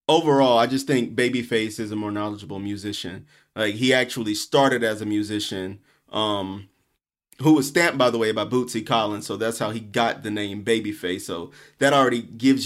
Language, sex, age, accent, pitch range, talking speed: English, male, 30-49, American, 105-125 Hz, 185 wpm